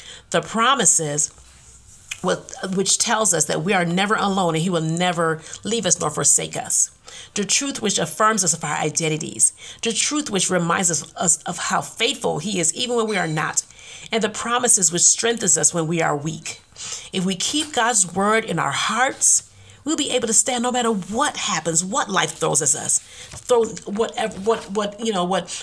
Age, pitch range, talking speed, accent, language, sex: 40-59, 155-215 Hz, 190 wpm, American, English, female